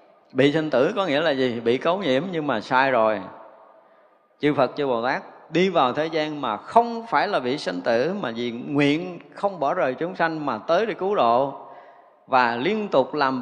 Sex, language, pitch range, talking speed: male, Vietnamese, 130-180 Hz, 210 wpm